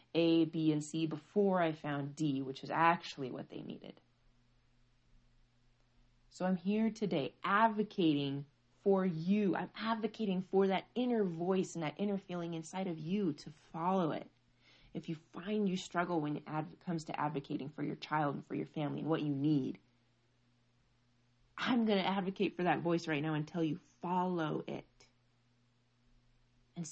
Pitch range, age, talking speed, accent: 120-170 Hz, 30-49, 165 wpm, American